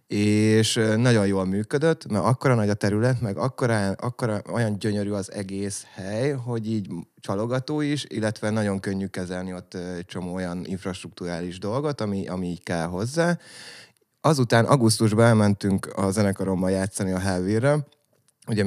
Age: 20-39